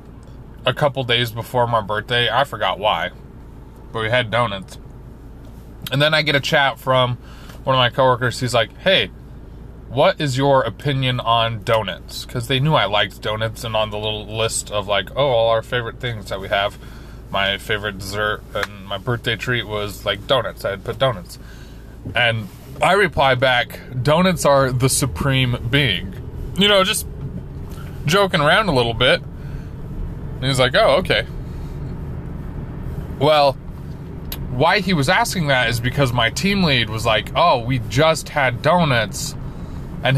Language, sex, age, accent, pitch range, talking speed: English, male, 20-39, American, 115-140 Hz, 165 wpm